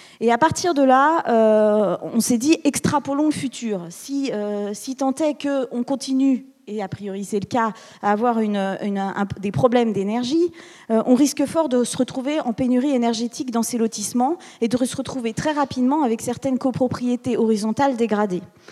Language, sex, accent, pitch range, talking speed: French, female, French, 215-265 Hz, 185 wpm